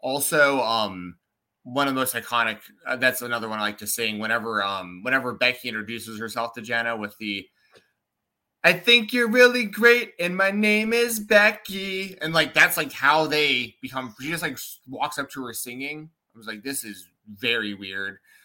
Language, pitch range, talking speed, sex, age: English, 115-175 Hz, 185 wpm, male, 30-49